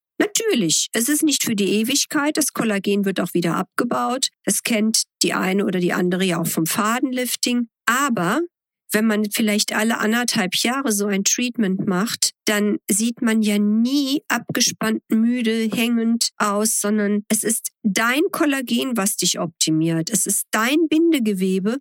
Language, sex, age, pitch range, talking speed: German, female, 50-69, 195-235 Hz, 155 wpm